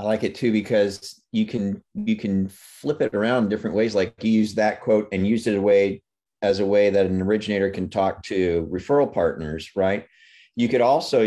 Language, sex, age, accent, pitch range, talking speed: English, male, 40-59, American, 100-125 Hz, 210 wpm